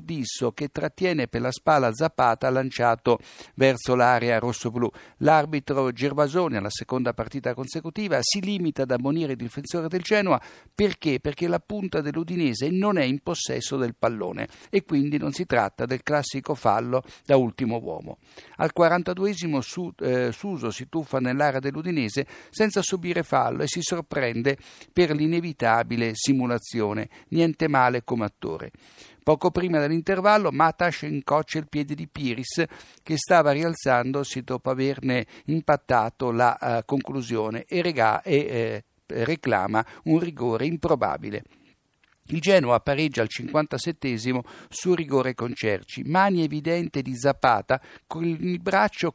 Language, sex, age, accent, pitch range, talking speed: Italian, male, 60-79, native, 125-165 Hz, 135 wpm